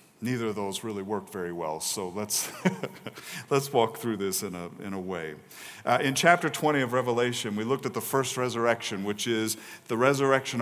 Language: English